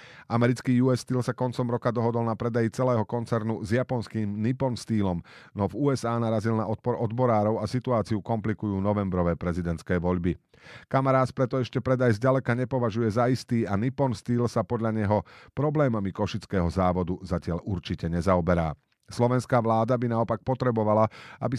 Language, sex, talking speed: Slovak, male, 150 wpm